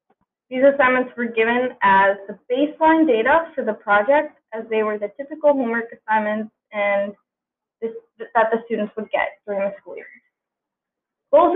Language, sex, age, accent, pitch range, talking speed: English, female, 20-39, American, 210-265 Hz, 145 wpm